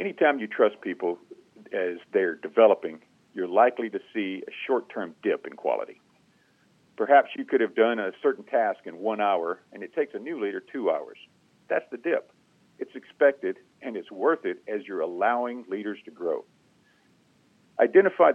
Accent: American